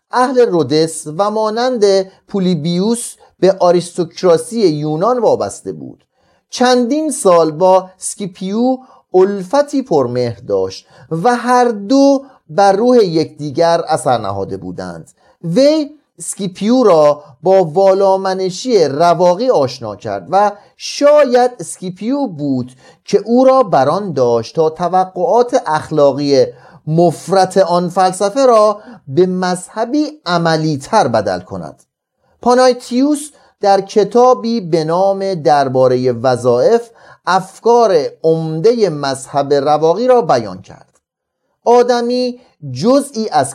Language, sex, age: Persian, male, 40-59